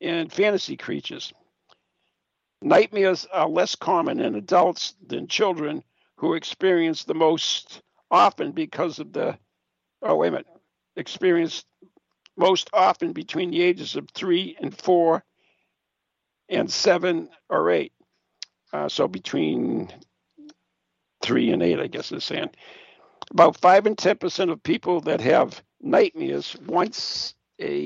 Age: 60-79